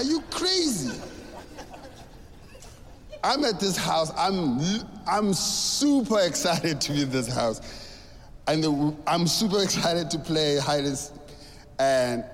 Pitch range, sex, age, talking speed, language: 125-190 Hz, male, 30-49, 130 wpm, English